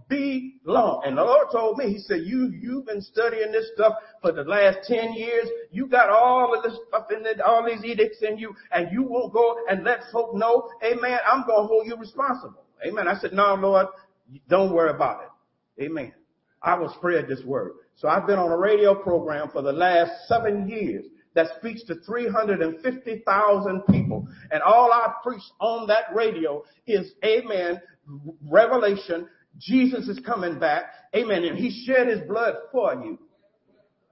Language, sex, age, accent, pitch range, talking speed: English, male, 50-69, American, 195-255 Hz, 190 wpm